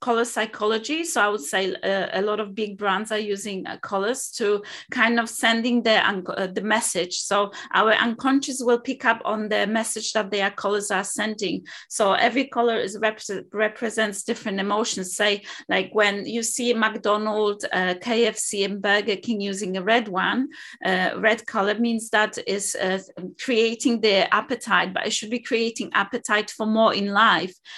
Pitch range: 205-235 Hz